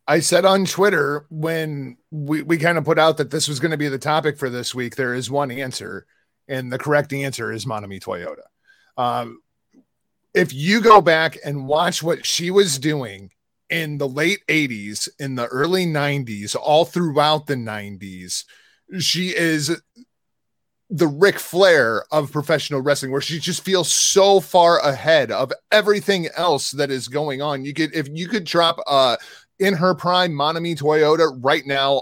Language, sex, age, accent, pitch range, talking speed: English, male, 30-49, American, 130-170 Hz, 175 wpm